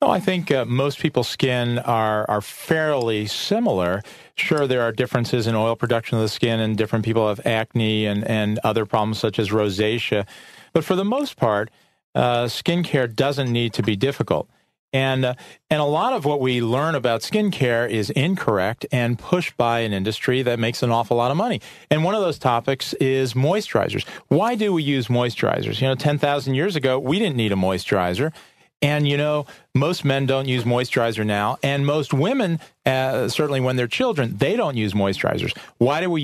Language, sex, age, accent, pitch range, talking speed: English, male, 40-59, American, 115-140 Hz, 195 wpm